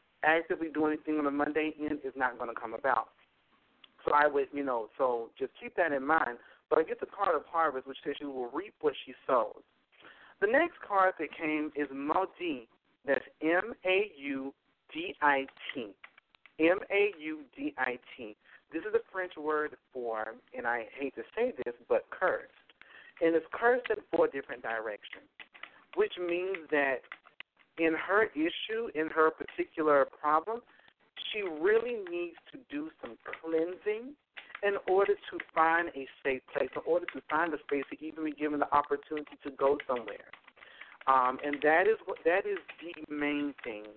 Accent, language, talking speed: American, English, 165 wpm